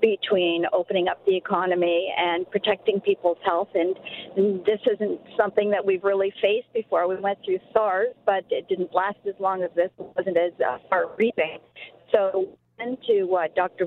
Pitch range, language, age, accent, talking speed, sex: 180-215 Hz, English, 50-69, American, 170 wpm, female